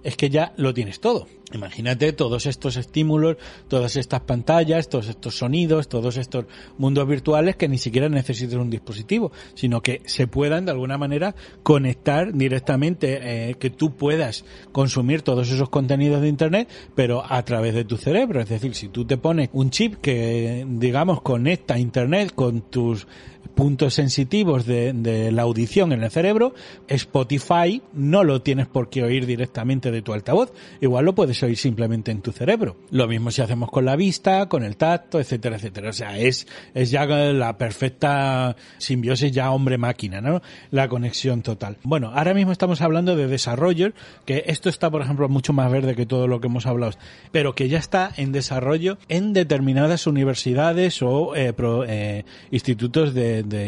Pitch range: 125-160 Hz